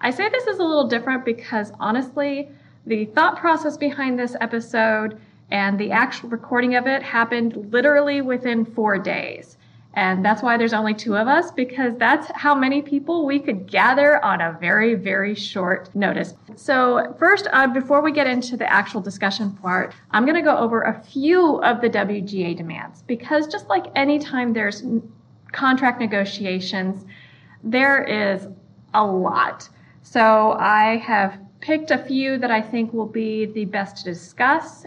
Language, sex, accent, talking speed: English, female, American, 165 wpm